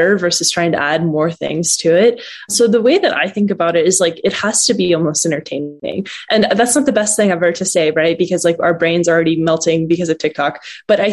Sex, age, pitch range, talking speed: female, 20-39, 165-200 Hz, 250 wpm